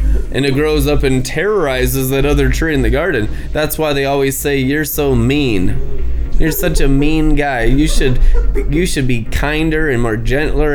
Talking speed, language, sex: 190 wpm, English, male